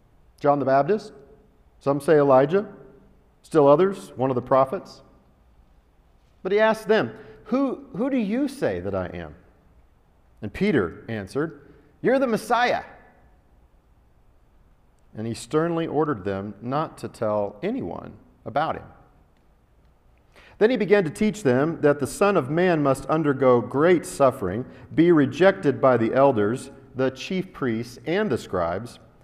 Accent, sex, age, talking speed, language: American, male, 50-69, 135 wpm, English